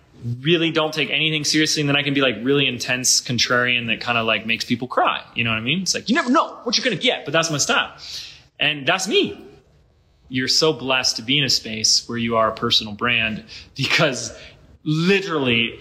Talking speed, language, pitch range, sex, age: 225 wpm, English, 110-160 Hz, male, 30-49